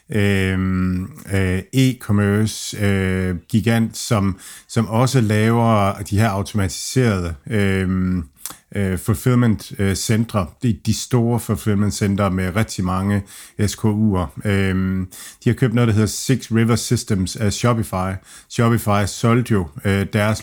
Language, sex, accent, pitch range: Danish, male, native, 95-115 Hz